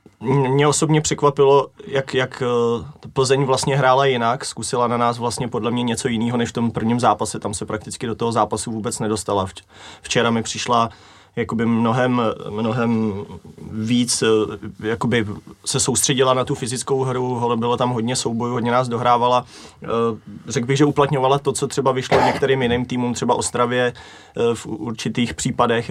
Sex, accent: male, native